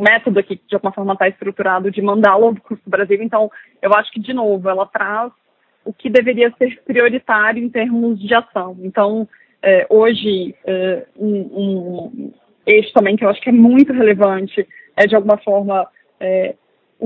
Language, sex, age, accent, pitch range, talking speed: Portuguese, female, 20-39, Brazilian, 195-230 Hz, 175 wpm